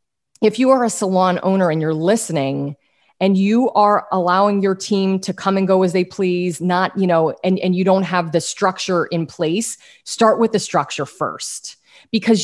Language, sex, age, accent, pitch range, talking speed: English, female, 30-49, American, 180-225 Hz, 195 wpm